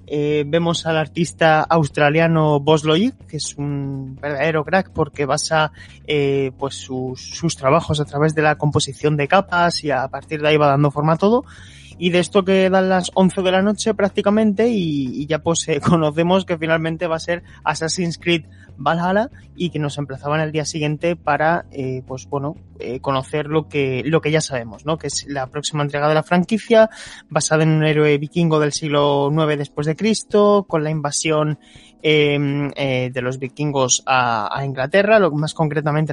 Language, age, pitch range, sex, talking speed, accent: Spanish, 20-39, 145-180 Hz, male, 185 wpm, Spanish